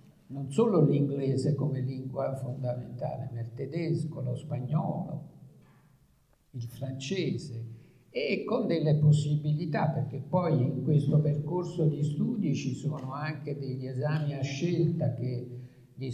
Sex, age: male, 50-69